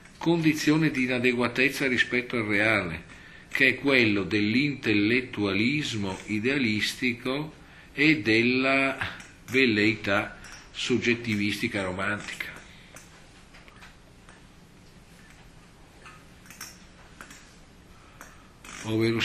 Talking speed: 55 wpm